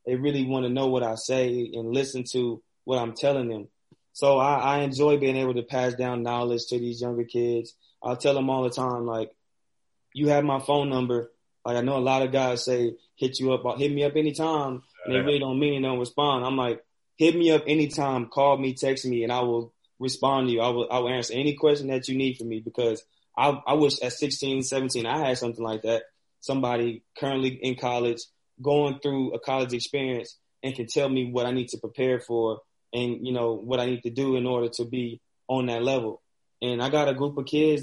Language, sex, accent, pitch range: English, male, American, 120-135 Hz